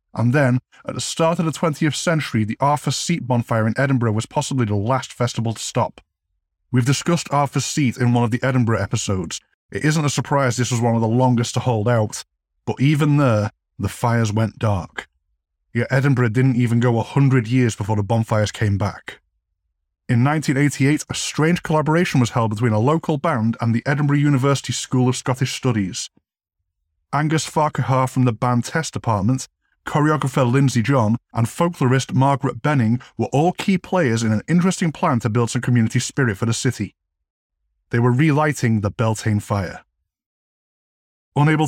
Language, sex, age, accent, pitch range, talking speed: English, male, 20-39, British, 115-140 Hz, 175 wpm